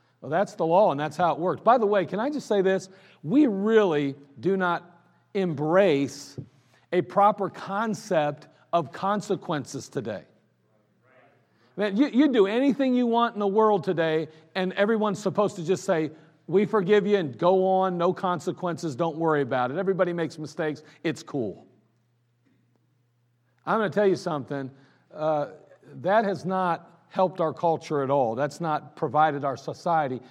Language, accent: English, American